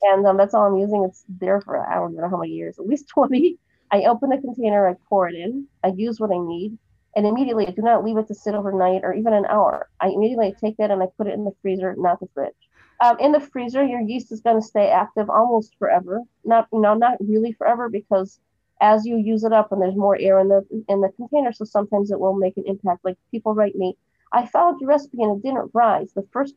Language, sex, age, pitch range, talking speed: English, female, 30-49, 195-230 Hz, 255 wpm